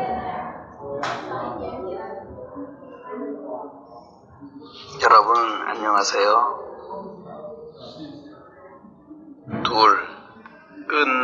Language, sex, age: Chinese, male, 50-69